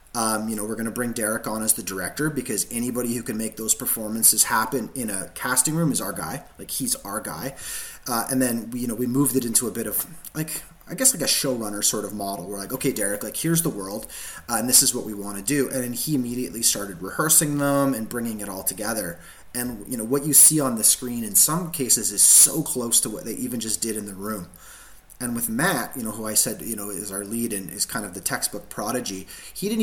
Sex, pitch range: male, 115-155 Hz